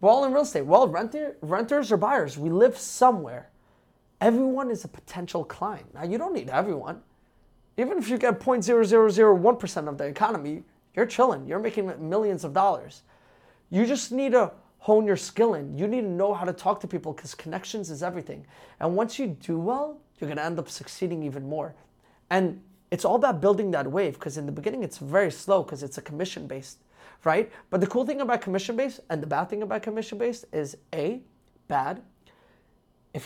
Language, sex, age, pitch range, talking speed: English, male, 30-49, 150-220 Hz, 195 wpm